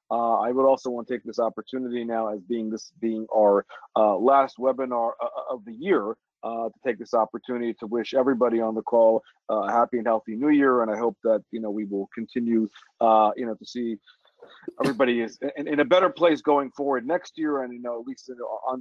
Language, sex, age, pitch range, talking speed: English, male, 40-59, 115-130 Hz, 225 wpm